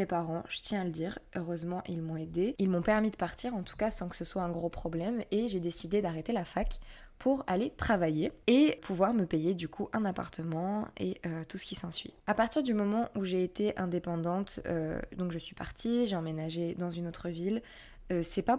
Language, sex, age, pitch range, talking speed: French, female, 20-39, 170-205 Hz, 225 wpm